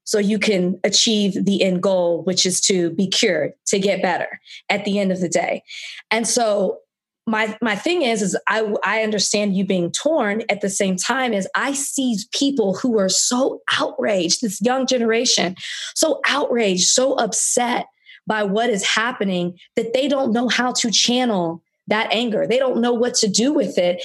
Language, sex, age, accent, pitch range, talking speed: English, female, 20-39, American, 195-245 Hz, 185 wpm